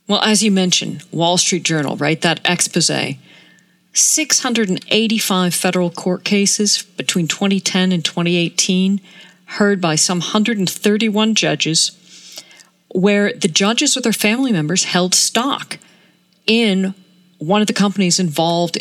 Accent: American